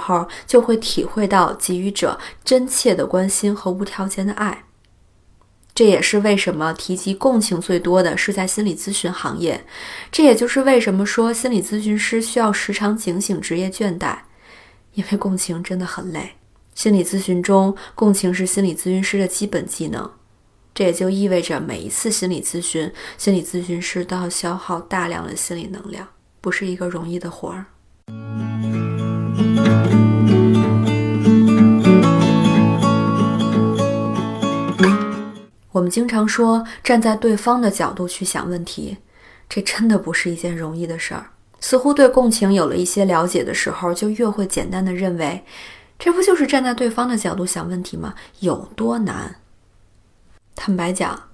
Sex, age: female, 20-39